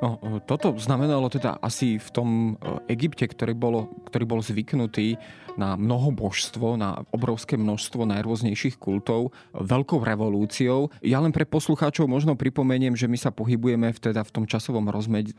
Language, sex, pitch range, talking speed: Slovak, male, 115-145 Hz, 140 wpm